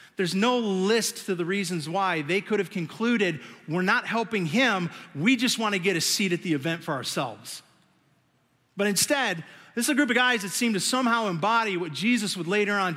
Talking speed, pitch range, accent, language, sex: 210 wpm, 155-220 Hz, American, English, male